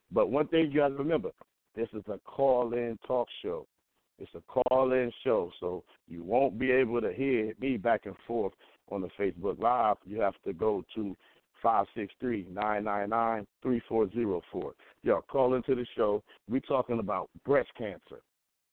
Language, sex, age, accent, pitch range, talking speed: English, male, 50-69, American, 100-125 Hz, 155 wpm